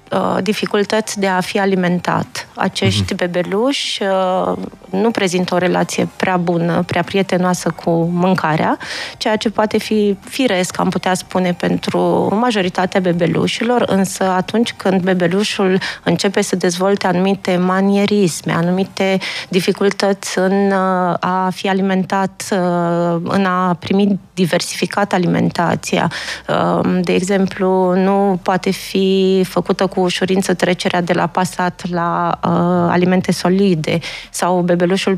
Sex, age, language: female, 20-39, Romanian